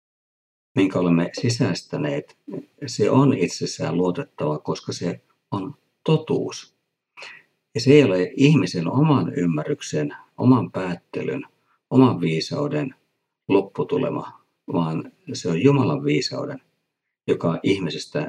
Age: 50-69